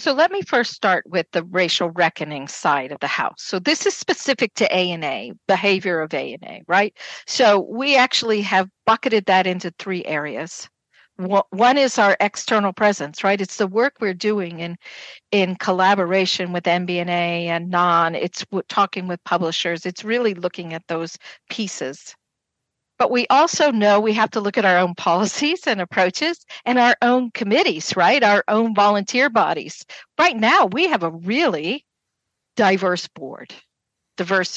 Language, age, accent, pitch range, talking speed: English, 50-69, American, 175-225 Hz, 160 wpm